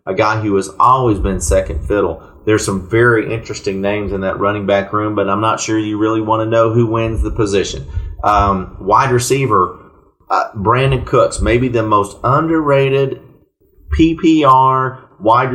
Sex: male